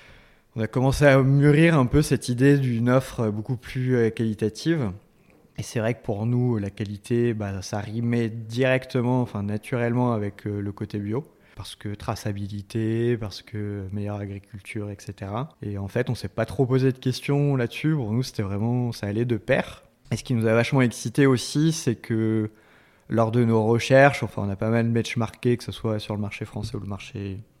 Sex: male